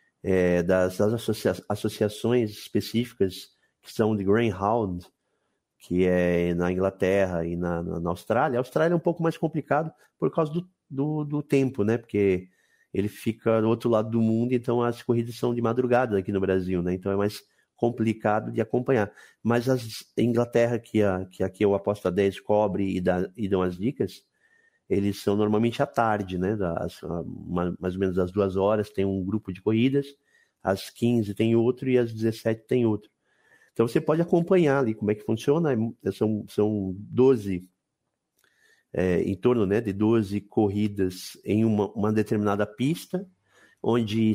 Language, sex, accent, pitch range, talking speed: Portuguese, male, Brazilian, 95-120 Hz, 170 wpm